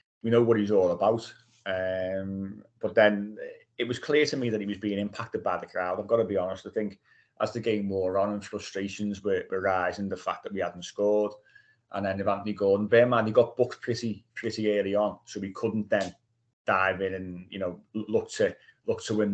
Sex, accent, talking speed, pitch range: male, British, 225 wpm, 100-115 Hz